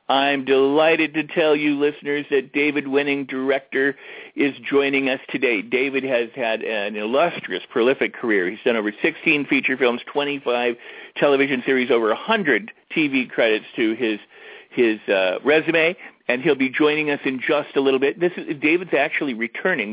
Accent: American